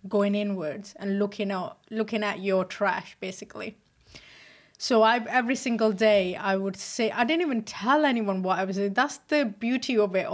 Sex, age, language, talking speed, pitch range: female, 20-39, English, 185 wpm, 195-225 Hz